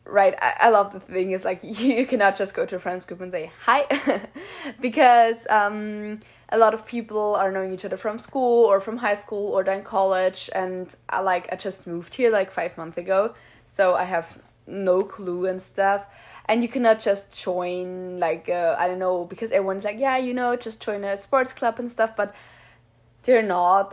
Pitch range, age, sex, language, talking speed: 180-225 Hz, 10-29, female, English, 210 wpm